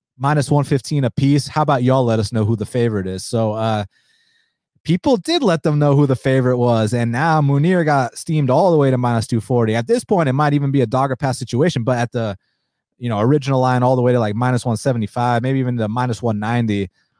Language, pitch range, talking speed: English, 120-155 Hz, 230 wpm